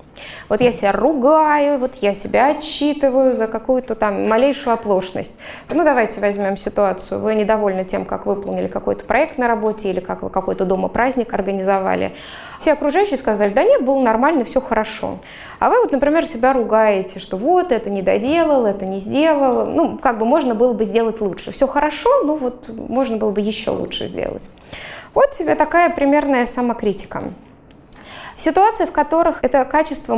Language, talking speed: Russian, 165 wpm